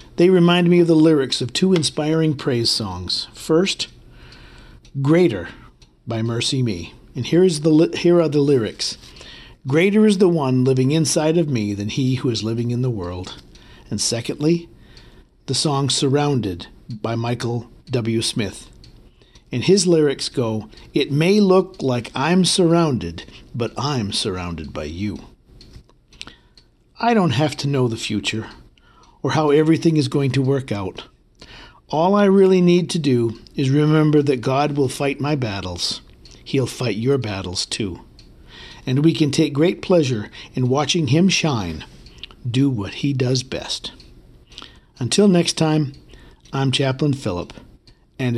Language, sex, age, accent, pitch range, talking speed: English, male, 50-69, American, 110-155 Hz, 145 wpm